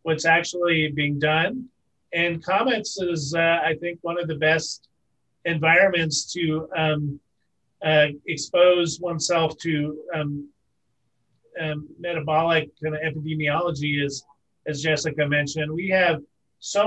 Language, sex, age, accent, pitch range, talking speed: English, male, 40-59, American, 150-170 Hz, 120 wpm